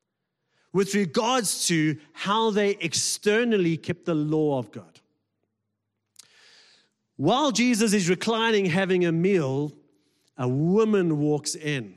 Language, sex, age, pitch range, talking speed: English, male, 40-59, 140-190 Hz, 110 wpm